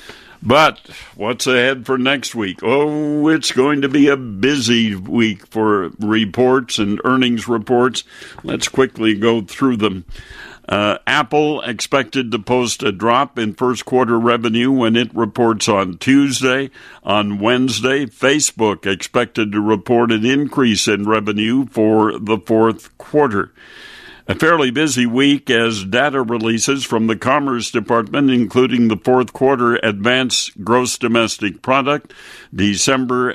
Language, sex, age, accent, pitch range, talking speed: English, male, 60-79, American, 110-130 Hz, 135 wpm